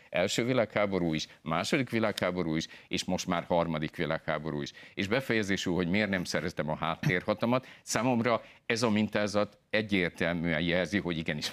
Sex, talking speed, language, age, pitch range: male, 145 wpm, Hungarian, 50-69, 85-110 Hz